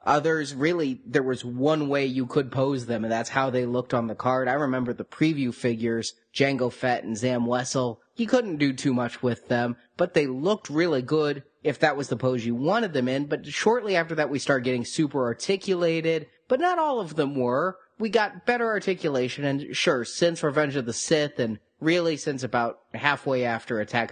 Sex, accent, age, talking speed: male, American, 30-49, 205 wpm